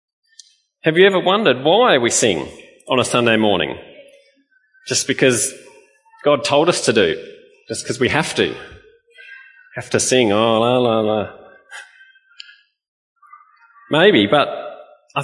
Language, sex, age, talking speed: English, male, 30-49, 130 wpm